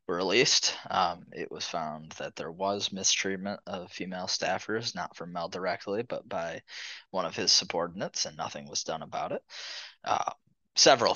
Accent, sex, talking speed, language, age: American, male, 160 wpm, English, 20-39